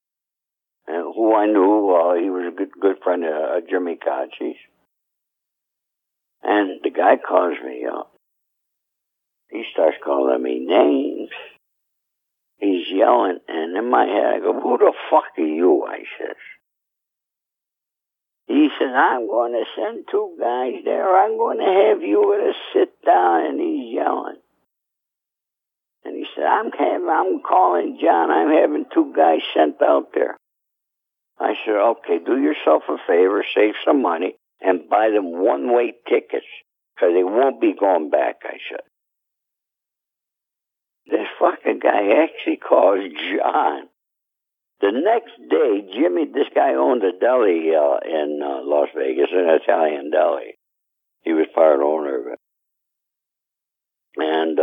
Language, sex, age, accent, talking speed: English, male, 60-79, American, 145 wpm